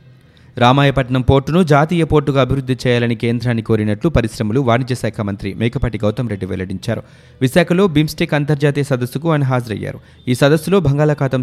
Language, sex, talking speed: Telugu, male, 130 wpm